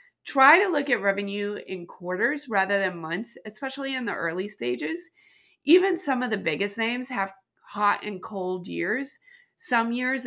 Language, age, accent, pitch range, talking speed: English, 30-49, American, 185-255 Hz, 165 wpm